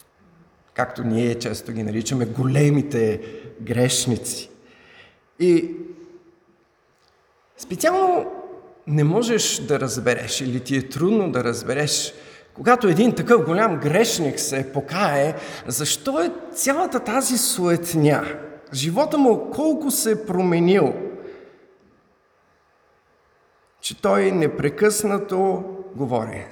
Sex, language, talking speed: male, Bulgarian, 95 wpm